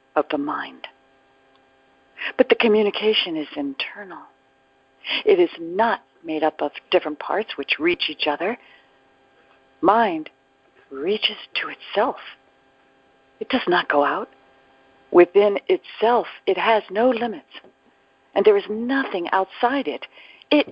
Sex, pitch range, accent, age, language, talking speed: female, 160-250 Hz, American, 50-69, English, 120 wpm